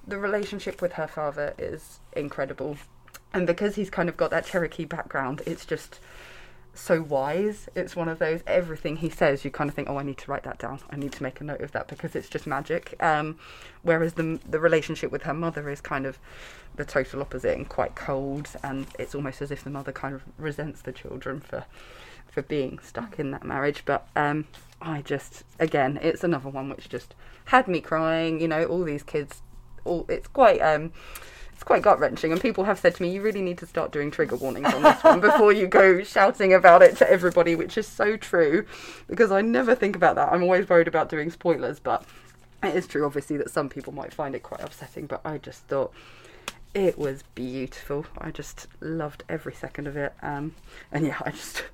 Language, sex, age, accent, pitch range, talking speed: English, female, 20-39, British, 145-185 Hz, 215 wpm